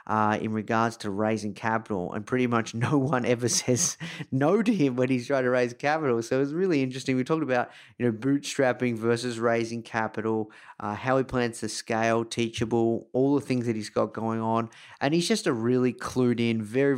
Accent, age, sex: Australian, 30-49, male